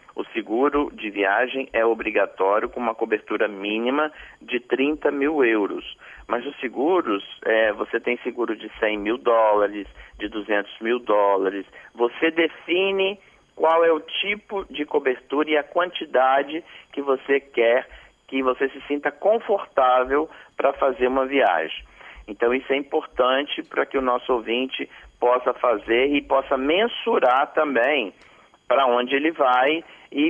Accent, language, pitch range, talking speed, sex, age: Brazilian, Portuguese, 115-155 Hz, 140 wpm, male, 40-59